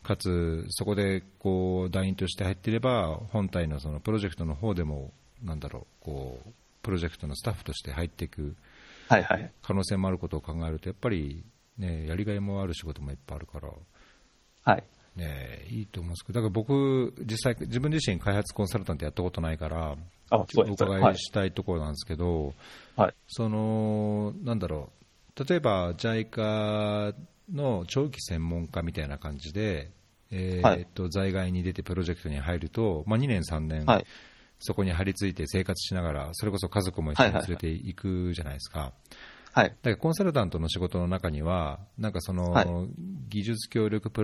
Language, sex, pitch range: Japanese, male, 85-110 Hz